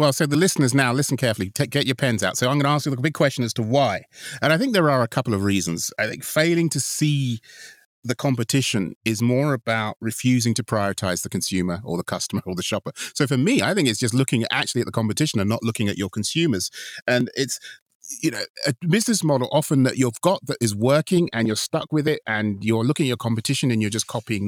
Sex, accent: male, British